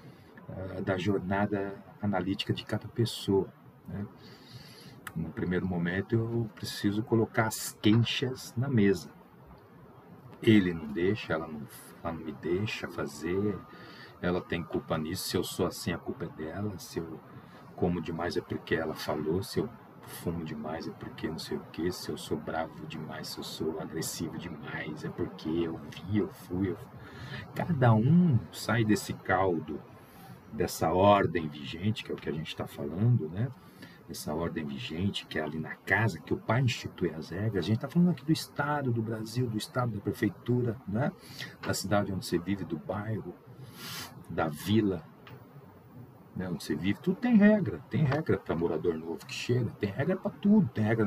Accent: Brazilian